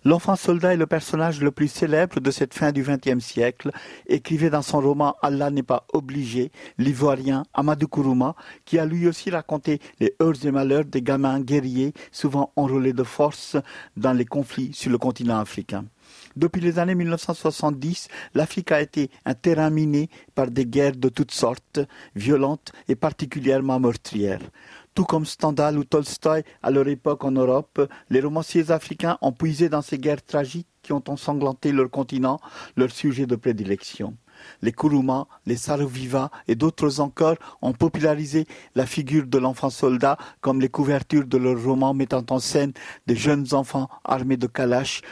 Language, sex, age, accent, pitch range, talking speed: French, male, 50-69, French, 130-150 Hz, 170 wpm